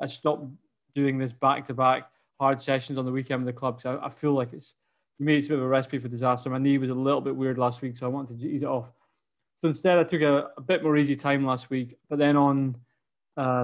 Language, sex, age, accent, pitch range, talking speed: English, male, 20-39, British, 130-145 Hz, 270 wpm